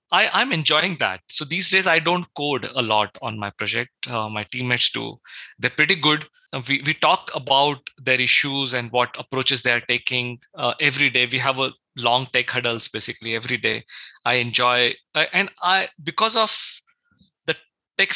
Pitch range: 125-180 Hz